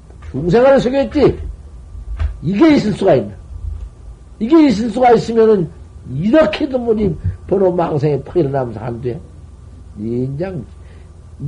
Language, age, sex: Korean, 60-79, male